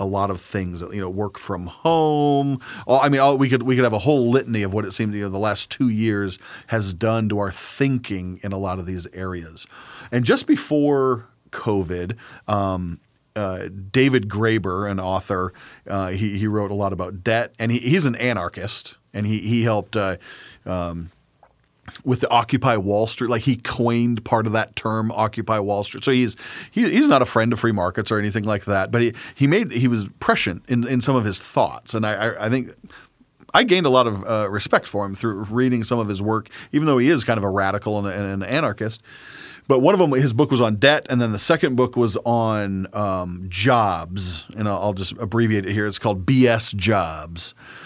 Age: 40-59